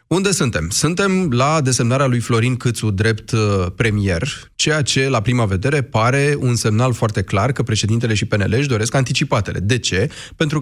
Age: 30-49